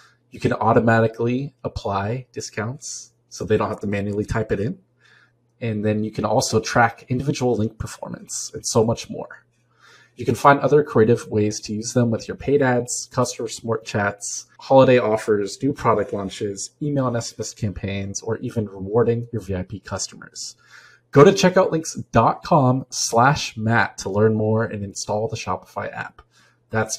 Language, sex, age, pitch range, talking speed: English, male, 20-39, 110-145 Hz, 160 wpm